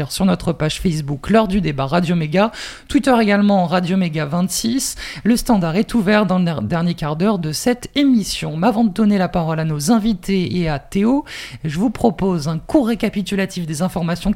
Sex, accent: male, French